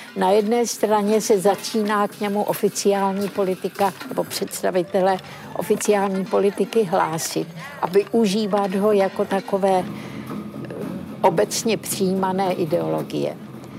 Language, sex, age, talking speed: Czech, female, 60-79, 95 wpm